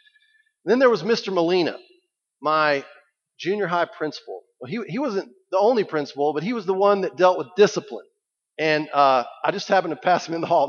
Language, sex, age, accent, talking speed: English, male, 40-59, American, 200 wpm